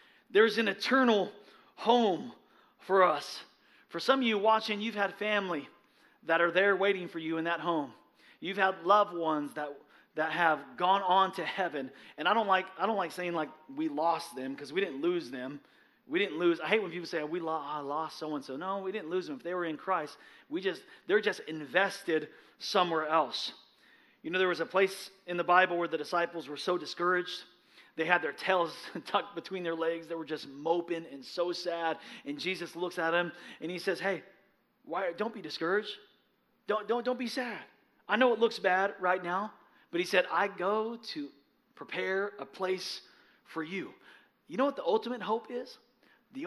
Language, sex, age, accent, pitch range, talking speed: English, male, 40-59, American, 165-215 Hz, 200 wpm